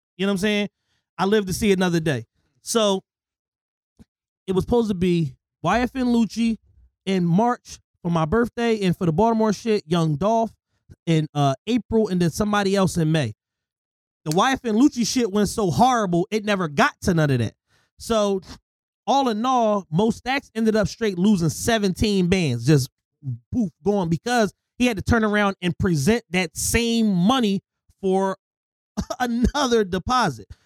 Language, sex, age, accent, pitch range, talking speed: English, male, 30-49, American, 175-230 Hz, 160 wpm